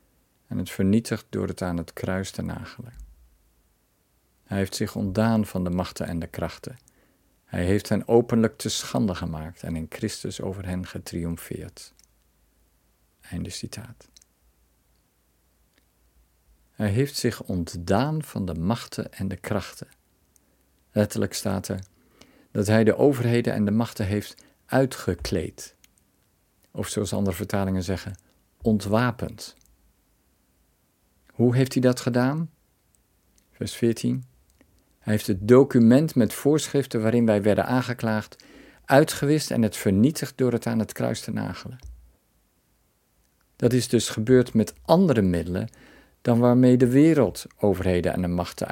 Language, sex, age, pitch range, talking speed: Dutch, male, 50-69, 85-115 Hz, 130 wpm